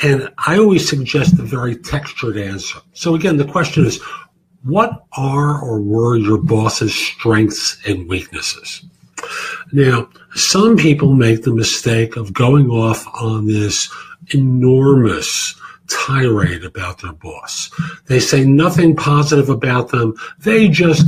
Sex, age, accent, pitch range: male, 50-69, American, 120-165 Hz